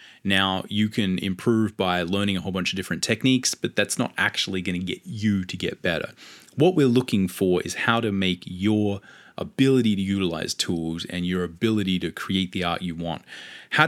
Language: English